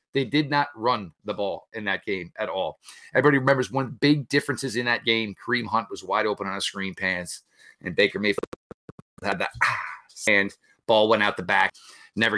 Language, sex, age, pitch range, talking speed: English, male, 30-49, 135-190 Hz, 200 wpm